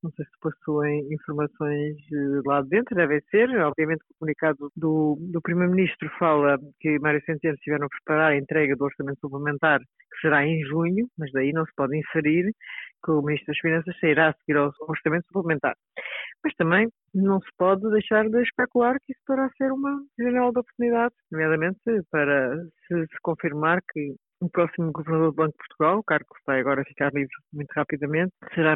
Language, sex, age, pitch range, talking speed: Portuguese, female, 50-69, 150-180 Hz, 185 wpm